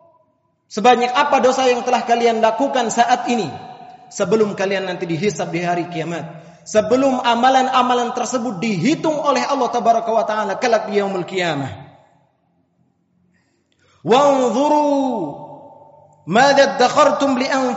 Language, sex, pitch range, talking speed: Indonesian, male, 165-265 Hz, 90 wpm